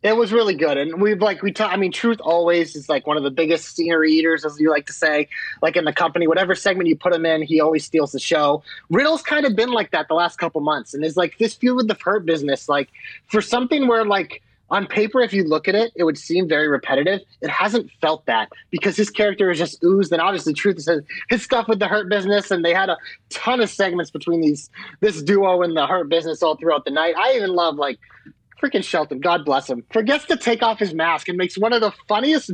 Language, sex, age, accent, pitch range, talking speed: English, male, 30-49, American, 170-245 Hz, 255 wpm